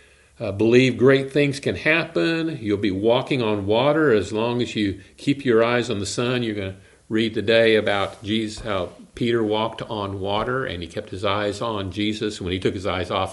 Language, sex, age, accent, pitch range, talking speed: English, male, 50-69, American, 105-130 Hz, 205 wpm